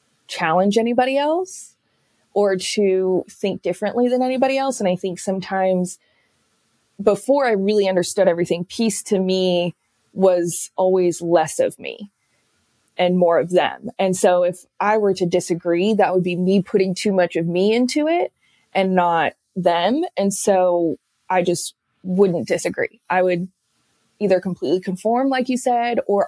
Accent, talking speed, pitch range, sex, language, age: American, 155 wpm, 180-210 Hz, female, English, 20-39